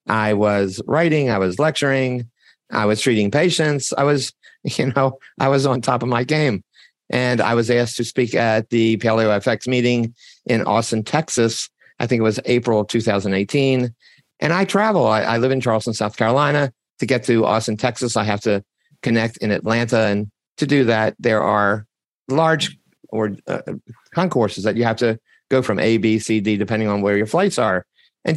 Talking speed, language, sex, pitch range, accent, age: 185 wpm, English, male, 115-140 Hz, American, 50-69